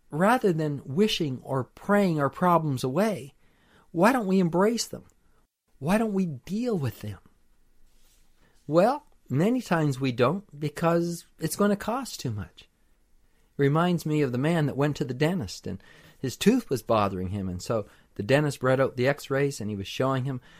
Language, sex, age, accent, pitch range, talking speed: English, male, 50-69, American, 125-180 Hz, 180 wpm